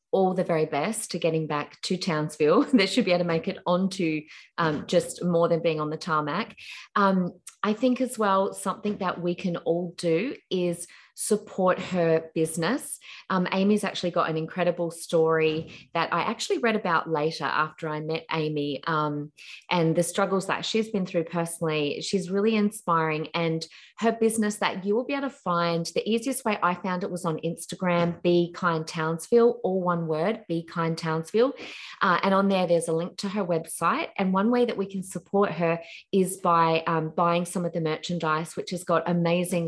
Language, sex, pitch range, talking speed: English, female, 165-195 Hz, 190 wpm